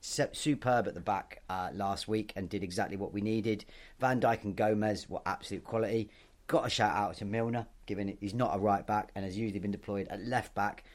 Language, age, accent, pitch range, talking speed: English, 30-49, British, 100-115 Hz, 225 wpm